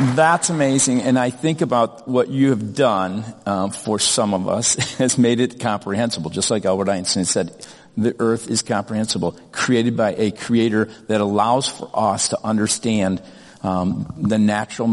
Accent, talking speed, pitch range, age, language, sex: American, 165 wpm, 95-115 Hz, 50-69, English, male